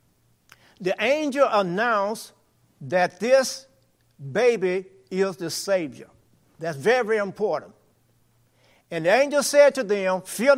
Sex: male